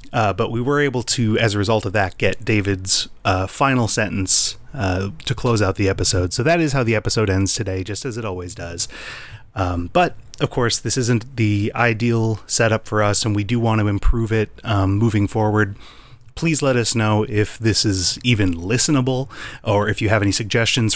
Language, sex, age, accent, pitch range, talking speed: English, male, 30-49, American, 100-125 Hz, 205 wpm